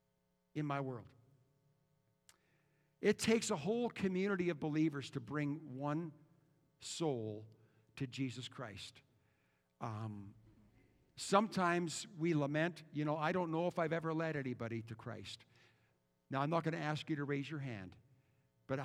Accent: American